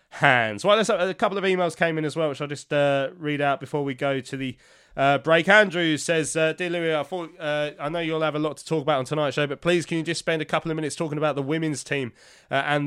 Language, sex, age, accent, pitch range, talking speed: English, male, 20-39, British, 130-155 Hz, 285 wpm